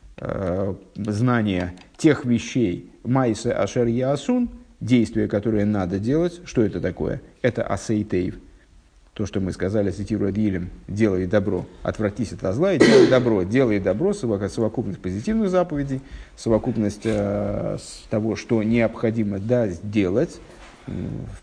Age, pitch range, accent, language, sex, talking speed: 50-69, 100-140 Hz, native, Russian, male, 120 wpm